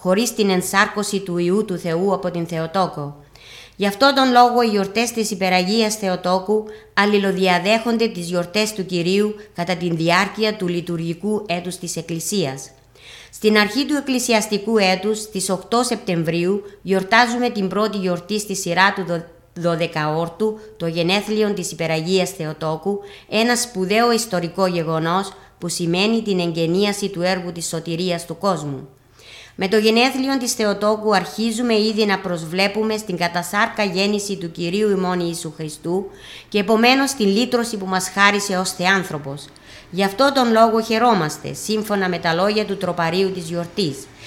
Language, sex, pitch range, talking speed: Greek, female, 170-215 Hz, 145 wpm